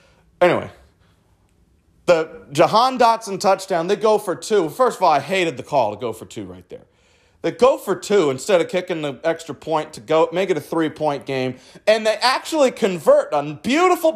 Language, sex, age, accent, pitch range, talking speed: English, male, 30-49, American, 155-210 Hz, 195 wpm